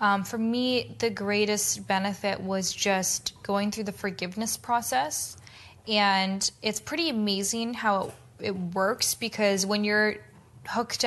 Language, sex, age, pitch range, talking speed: English, female, 10-29, 190-215 Hz, 135 wpm